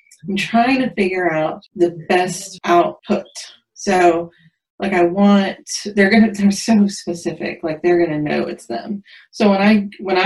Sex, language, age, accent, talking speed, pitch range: female, English, 30-49, American, 170 wpm, 170-205 Hz